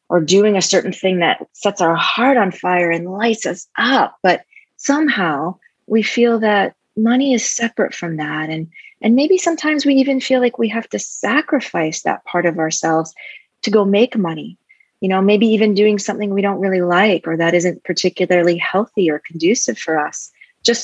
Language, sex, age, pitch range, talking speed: English, female, 30-49, 175-240 Hz, 185 wpm